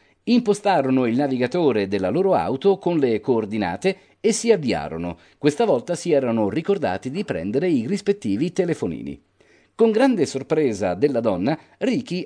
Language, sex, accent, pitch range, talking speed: Italian, male, native, 130-195 Hz, 135 wpm